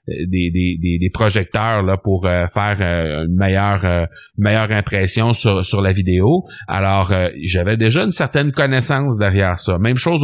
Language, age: French, 30-49